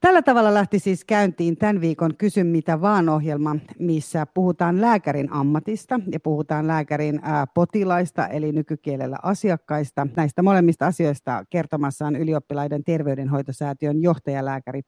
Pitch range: 145-190 Hz